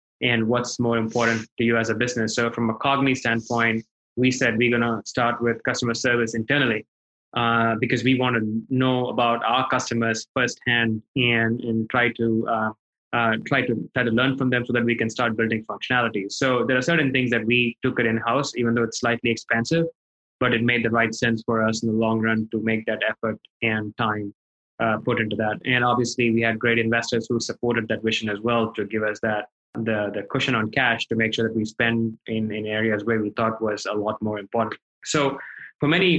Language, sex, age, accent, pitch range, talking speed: English, male, 20-39, Indian, 110-120 Hz, 210 wpm